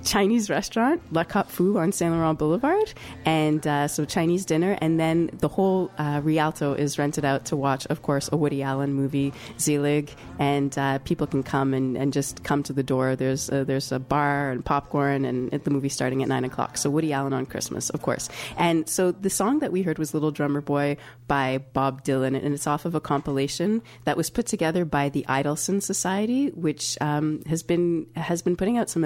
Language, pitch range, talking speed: English, 140-165 Hz, 210 wpm